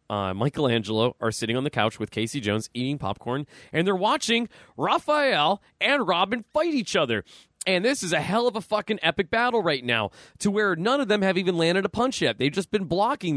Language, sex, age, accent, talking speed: English, male, 20-39, American, 215 wpm